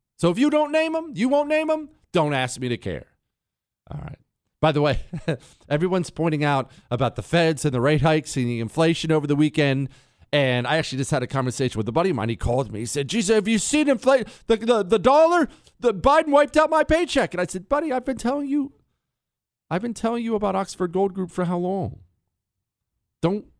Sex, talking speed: male, 225 wpm